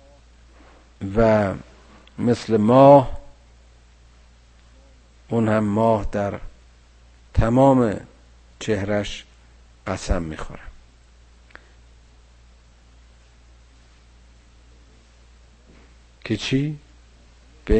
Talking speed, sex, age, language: 45 wpm, male, 50-69, Persian